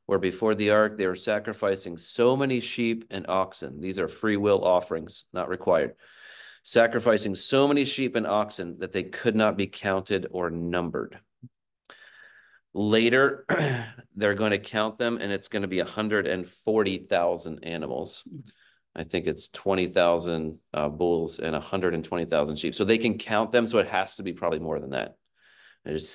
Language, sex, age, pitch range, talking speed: English, male, 30-49, 95-115 Hz, 160 wpm